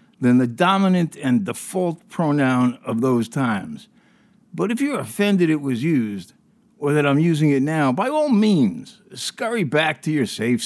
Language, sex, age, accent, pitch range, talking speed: English, male, 60-79, American, 155-220 Hz, 170 wpm